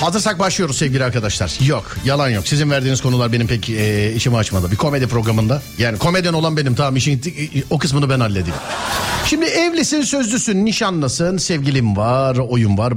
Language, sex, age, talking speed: Turkish, male, 50-69, 165 wpm